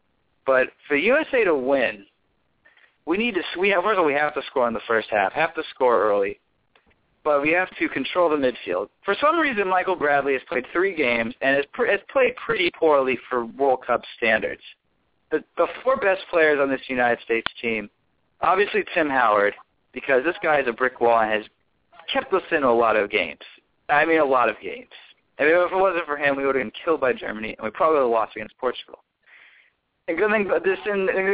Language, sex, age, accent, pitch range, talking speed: English, male, 40-59, American, 135-205 Hz, 205 wpm